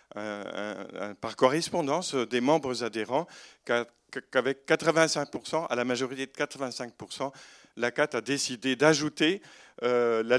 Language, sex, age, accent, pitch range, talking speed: French, male, 50-69, French, 115-140 Hz, 105 wpm